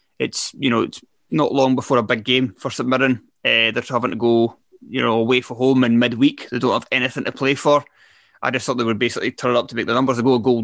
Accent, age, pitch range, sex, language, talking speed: British, 20-39, 115-130 Hz, male, English, 275 wpm